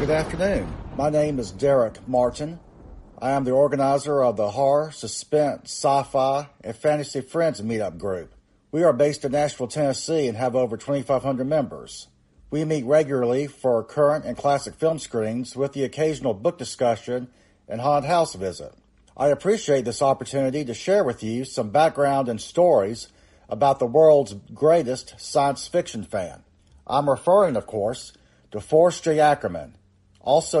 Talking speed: 155 wpm